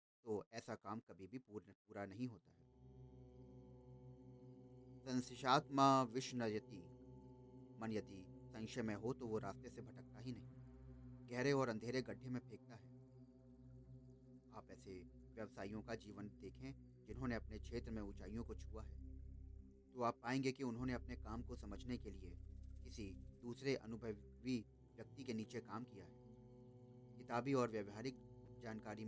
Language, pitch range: Hindi, 100-125 Hz